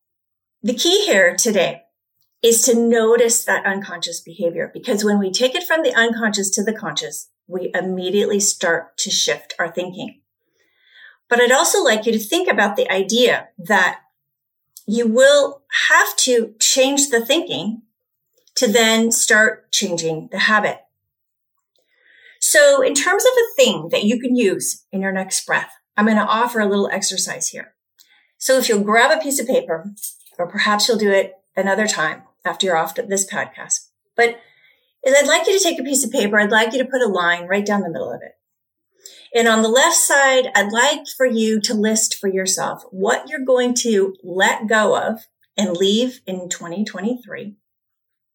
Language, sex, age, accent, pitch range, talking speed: English, female, 40-59, American, 195-265 Hz, 175 wpm